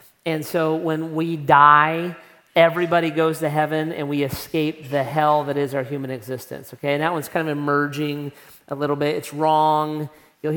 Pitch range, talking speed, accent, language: 145-165 Hz, 180 wpm, American, English